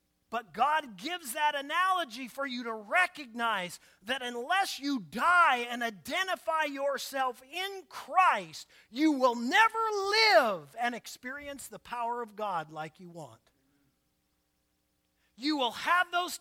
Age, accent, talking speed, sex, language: 40-59, American, 130 wpm, male, English